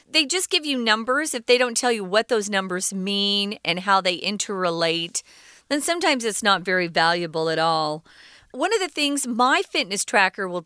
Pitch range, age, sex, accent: 180-255 Hz, 40-59, female, American